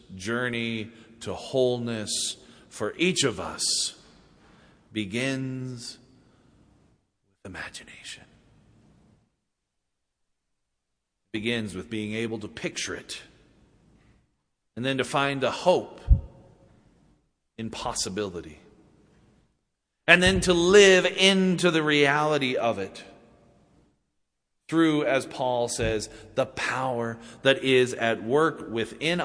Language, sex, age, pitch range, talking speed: English, male, 40-59, 115-155 Hz, 95 wpm